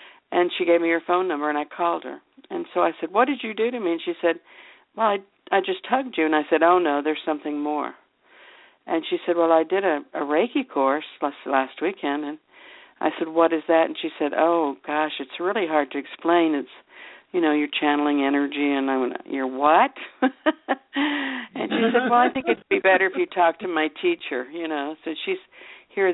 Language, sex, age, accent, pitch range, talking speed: English, female, 60-79, American, 150-190 Hz, 225 wpm